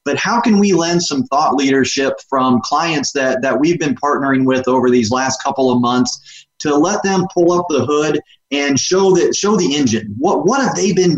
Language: English